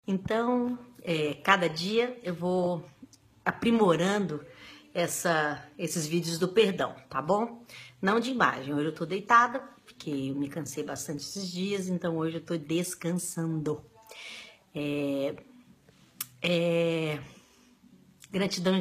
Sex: female